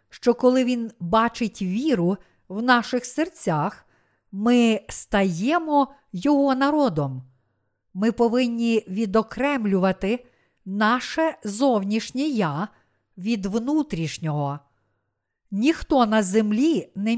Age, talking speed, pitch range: 50-69, 85 wpm, 190-260 Hz